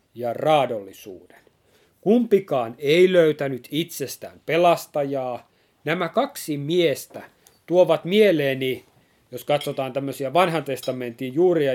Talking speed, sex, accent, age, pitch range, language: 90 wpm, male, native, 30-49, 130-170 Hz, Finnish